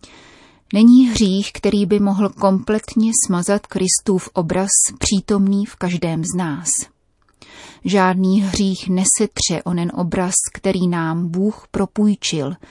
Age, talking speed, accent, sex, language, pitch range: 30-49, 110 wpm, native, female, Czech, 175-210 Hz